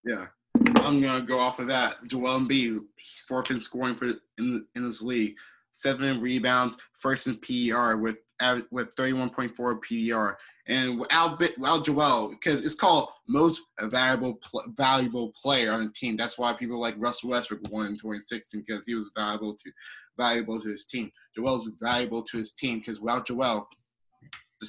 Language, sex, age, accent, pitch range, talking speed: English, male, 20-39, American, 115-140 Hz, 170 wpm